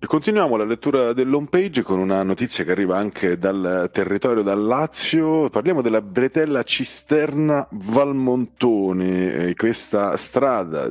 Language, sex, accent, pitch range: Italian, male, native, 90-125 Hz